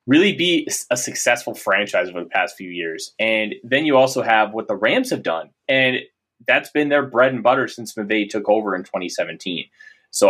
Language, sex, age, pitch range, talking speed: English, male, 30-49, 100-150 Hz, 200 wpm